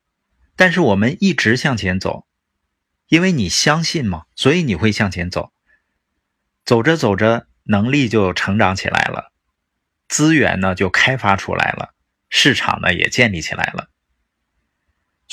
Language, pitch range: Chinese, 90-130 Hz